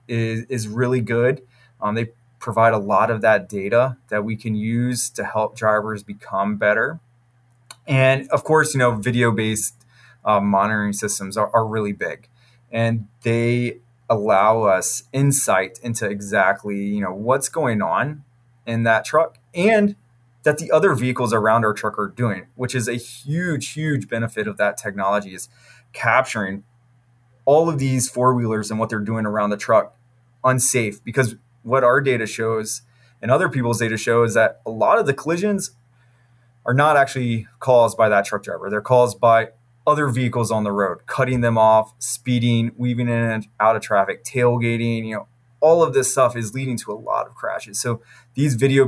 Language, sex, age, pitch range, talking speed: English, male, 20-39, 110-125 Hz, 170 wpm